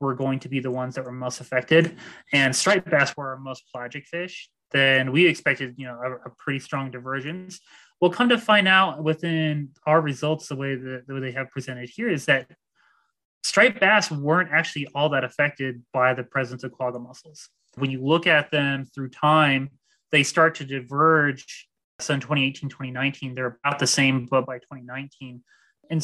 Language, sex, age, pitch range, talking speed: English, male, 30-49, 130-160 Hz, 190 wpm